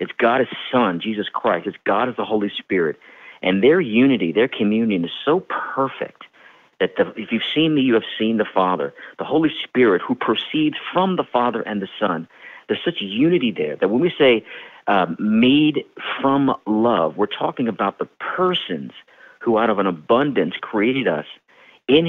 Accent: American